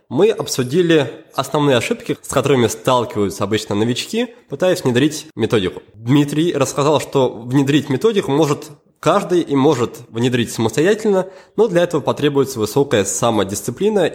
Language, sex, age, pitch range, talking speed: Russian, male, 20-39, 115-155 Hz, 125 wpm